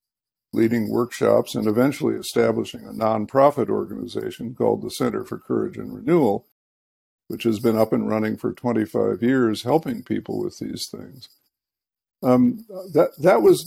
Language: English